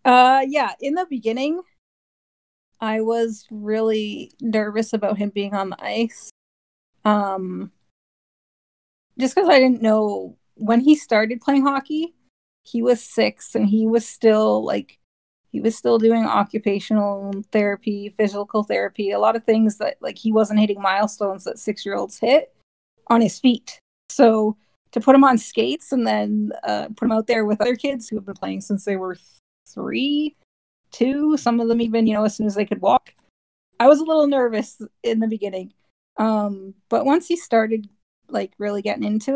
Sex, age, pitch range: female, 30-49, 205-235 Hz